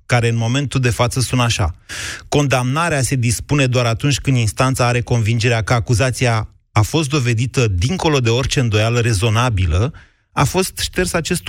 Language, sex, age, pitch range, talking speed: Romanian, male, 30-49, 110-150 Hz, 155 wpm